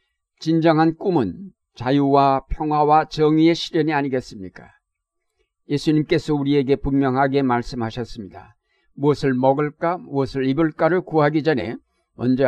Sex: male